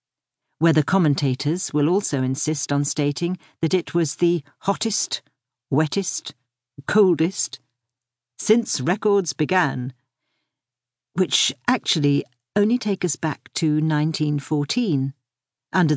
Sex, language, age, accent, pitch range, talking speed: female, English, 50-69, British, 135-190 Hz, 100 wpm